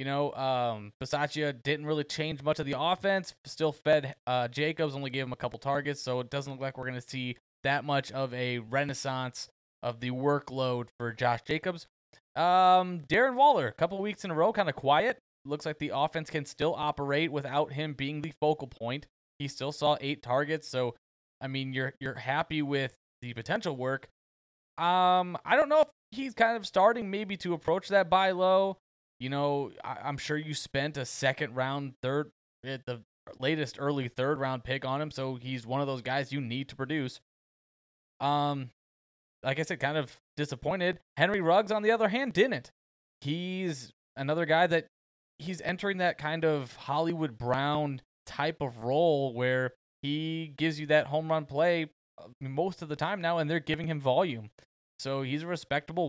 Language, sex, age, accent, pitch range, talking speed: English, male, 20-39, American, 130-160 Hz, 185 wpm